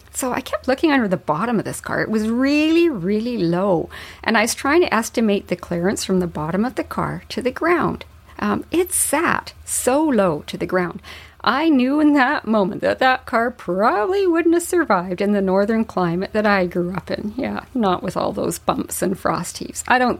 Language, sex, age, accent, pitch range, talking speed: English, female, 50-69, American, 185-260 Hz, 215 wpm